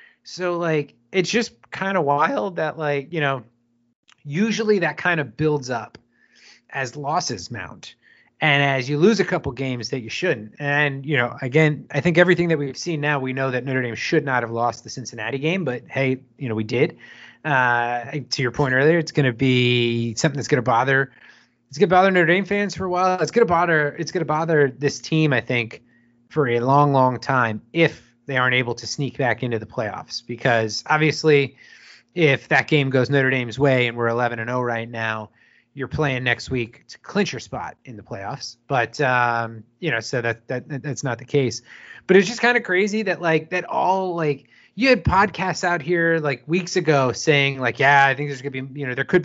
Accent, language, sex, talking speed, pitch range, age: American, English, male, 220 wpm, 125-165 Hz, 30-49